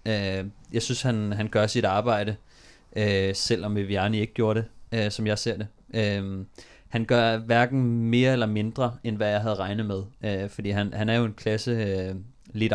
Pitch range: 95-115 Hz